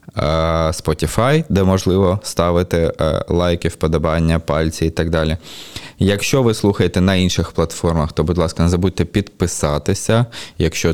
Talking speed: 125 wpm